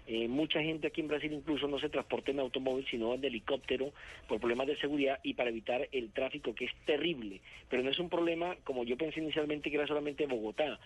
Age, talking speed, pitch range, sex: 40-59, 220 wpm, 130-155 Hz, male